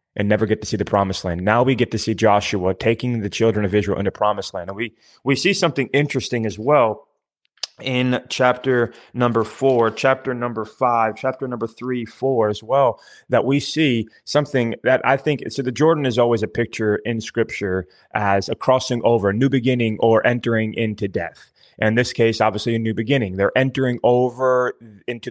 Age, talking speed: 20-39, 190 wpm